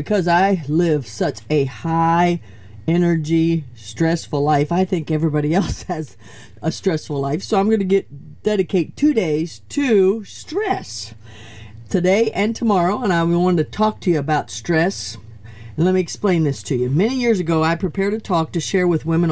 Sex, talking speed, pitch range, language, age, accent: female, 175 wpm, 145-195 Hz, English, 50-69, American